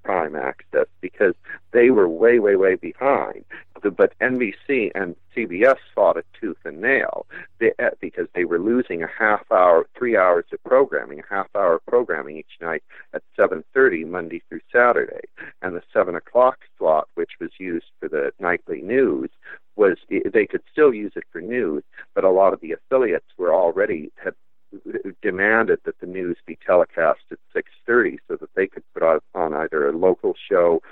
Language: English